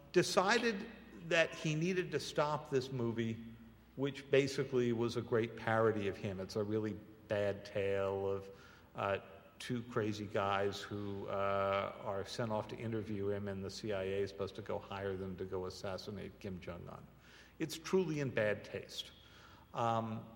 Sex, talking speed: male, 160 wpm